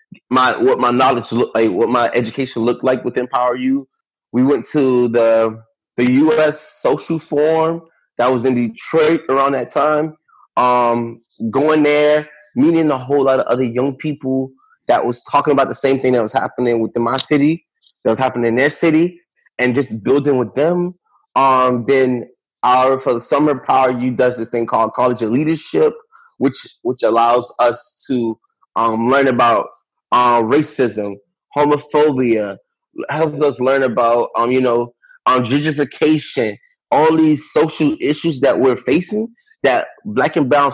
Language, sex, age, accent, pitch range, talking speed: English, male, 20-39, American, 120-155 Hz, 160 wpm